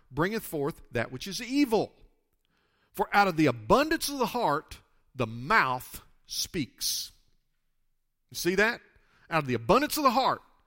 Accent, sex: American, male